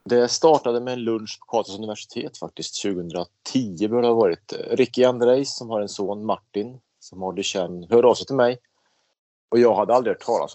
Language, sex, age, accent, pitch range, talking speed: Swedish, male, 30-49, Norwegian, 100-125 Hz, 205 wpm